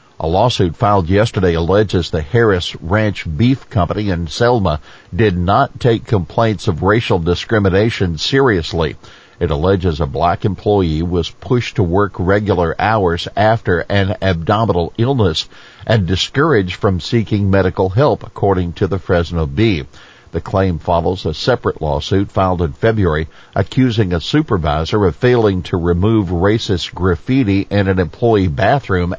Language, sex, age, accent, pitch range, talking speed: English, male, 50-69, American, 90-110 Hz, 140 wpm